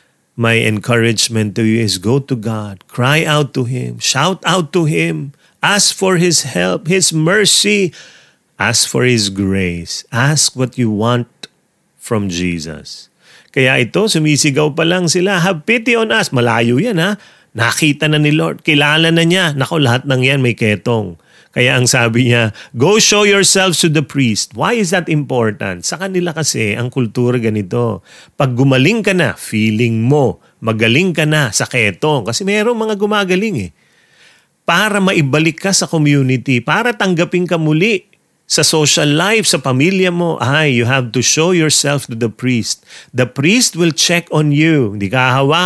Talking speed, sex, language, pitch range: 165 wpm, male, English, 120-170 Hz